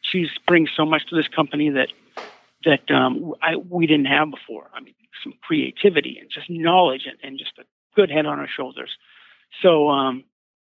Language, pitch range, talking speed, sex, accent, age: English, 145-185 Hz, 180 wpm, male, American, 50-69